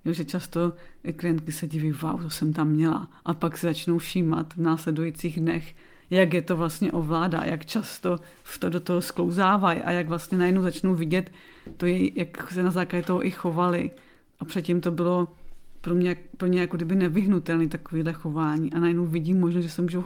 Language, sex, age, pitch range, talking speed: Czech, female, 30-49, 160-180 Hz, 195 wpm